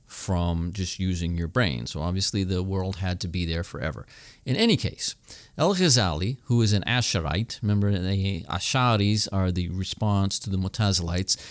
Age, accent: 40-59, American